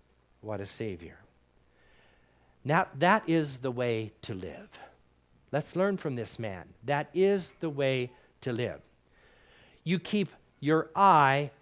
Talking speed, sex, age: 130 wpm, male, 40-59